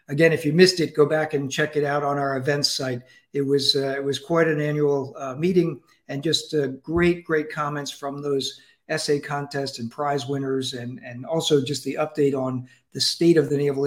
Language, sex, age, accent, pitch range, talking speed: English, male, 50-69, American, 140-160 Hz, 215 wpm